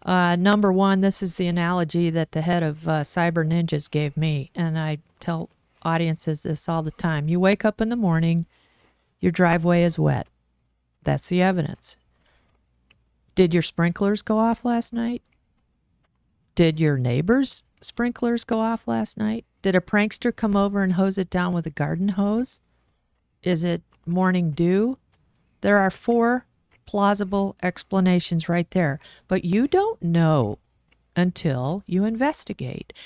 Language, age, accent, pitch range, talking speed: English, 40-59, American, 165-210 Hz, 150 wpm